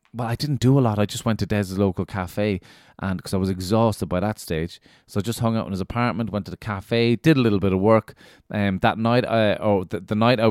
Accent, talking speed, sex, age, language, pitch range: Irish, 280 wpm, male, 20-39, English, 110-145 Hz